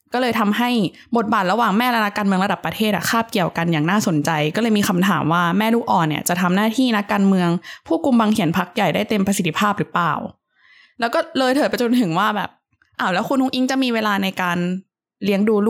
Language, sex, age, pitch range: Thai, female, 20-39, 180-235 Hz